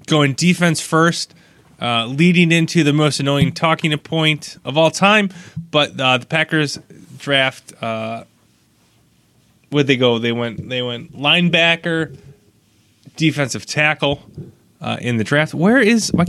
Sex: male